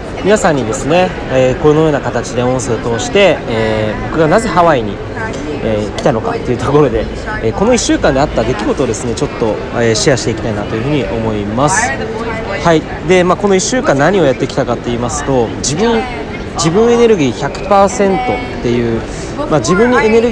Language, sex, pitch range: Japanese, male, 125-200 Hz